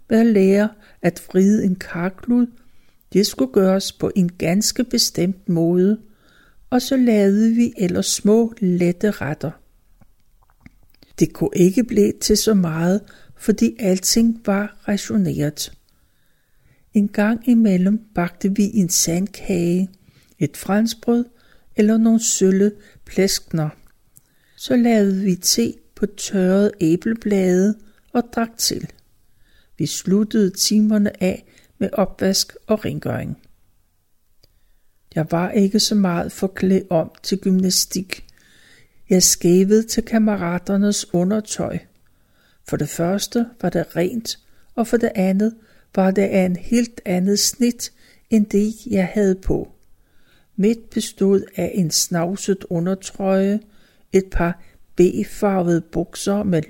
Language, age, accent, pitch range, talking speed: Danish, 60-79, native, 180-215 Hz, 115 wpm